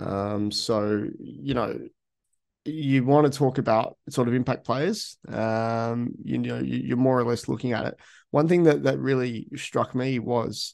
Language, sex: English, male